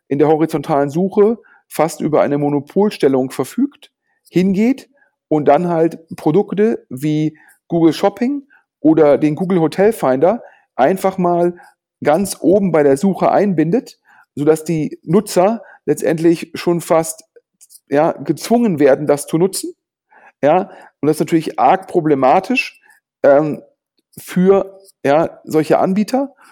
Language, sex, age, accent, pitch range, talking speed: German, male, 40-59, German, 150-205 Hz, 120 wpm